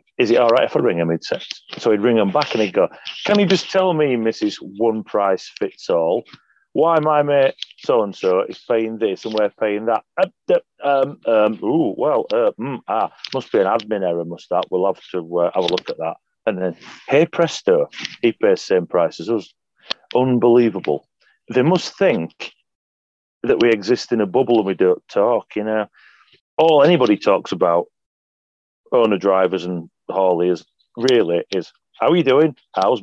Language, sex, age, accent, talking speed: English, male, 40-59, British, 190 wpm